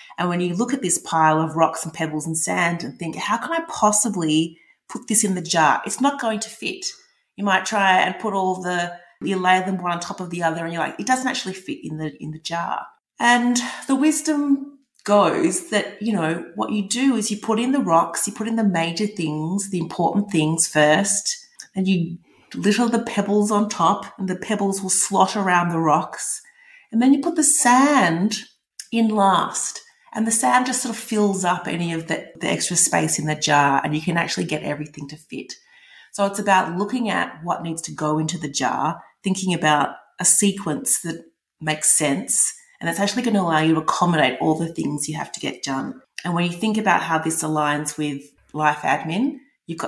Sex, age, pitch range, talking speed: female, 30-49, 165-225 Hz, 215 wpm